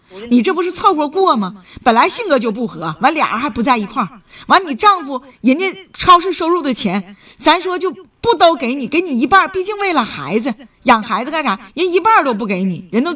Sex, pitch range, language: female, 210-315 Hz, Chinese